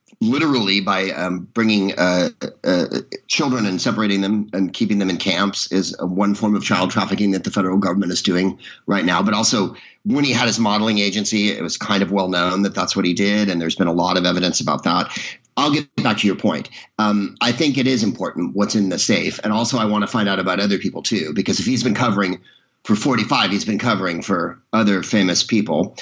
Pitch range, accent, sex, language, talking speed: 95-120 Hz, American, male, English, 225 wpm